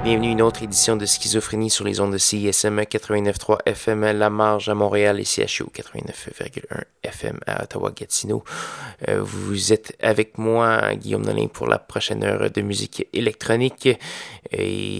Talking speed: 155 wpm